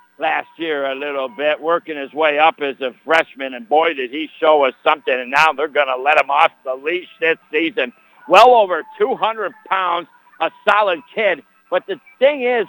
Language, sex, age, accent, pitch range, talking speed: English, male, 60-79, American, 150-200 Hz, 200 wpm